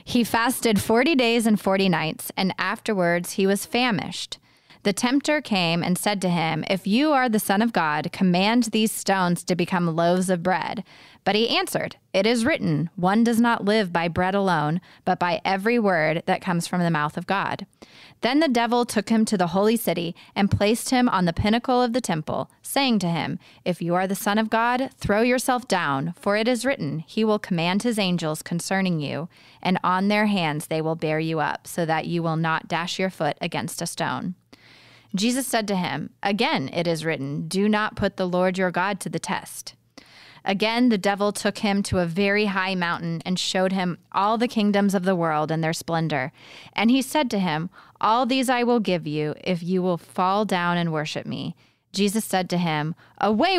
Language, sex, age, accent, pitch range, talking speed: English, female, 20-39, American, 170-215 Hz, 205 wpm